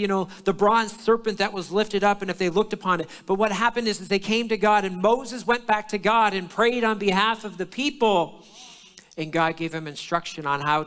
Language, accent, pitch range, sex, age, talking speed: English, American, 175-230 Hz, male, 50-69, 245 wpm